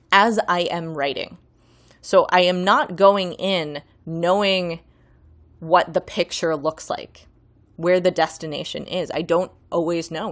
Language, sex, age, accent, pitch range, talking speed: English, female, 20-39, American, 155-190 Hz, 140 wpm